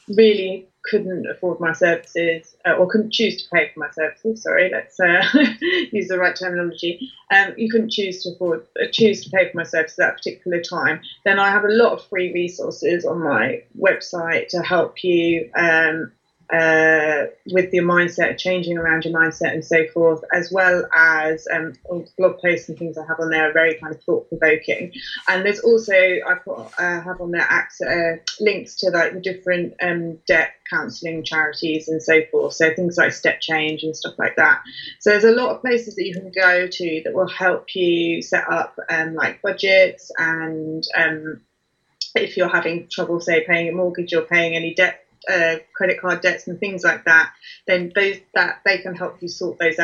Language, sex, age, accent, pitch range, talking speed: English, female, 20-39, British, 165-185 Hz, 195 wpm